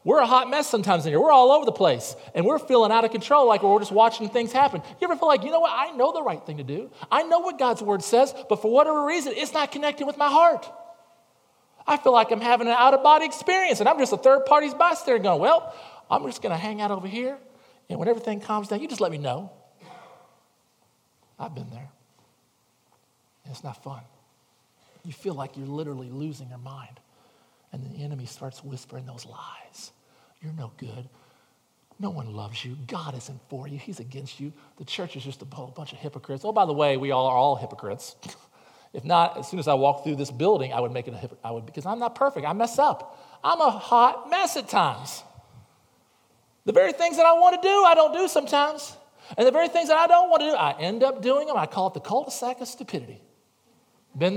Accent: American